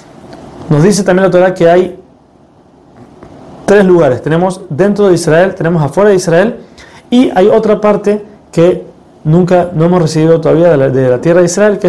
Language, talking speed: Spanish, 170 wpm